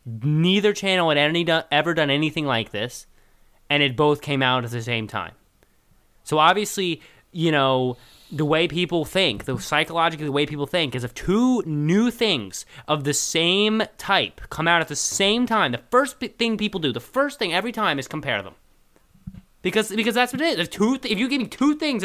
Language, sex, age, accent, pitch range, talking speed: English, male, 20-39, American, 140-210 Hz, 200 wpm